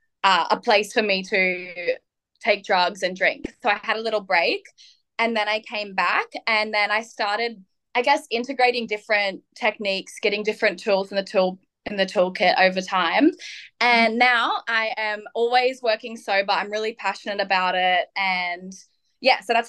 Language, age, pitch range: English, 10-29, 195-235 Hz